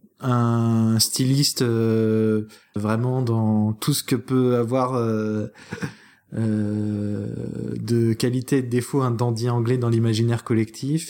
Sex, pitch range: male, 110-135 Hz